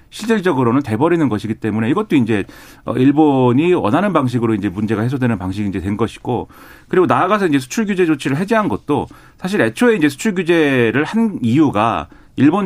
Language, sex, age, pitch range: Korean, male, 40-59, 120-175 Hz